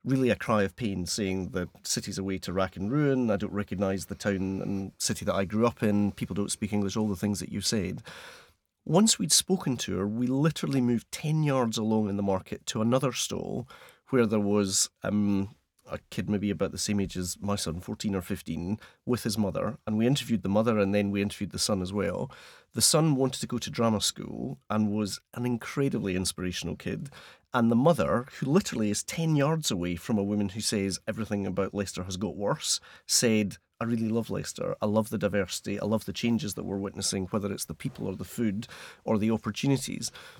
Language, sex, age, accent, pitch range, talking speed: English, male, 30-49, British, 100-125 Hz, 215 wpm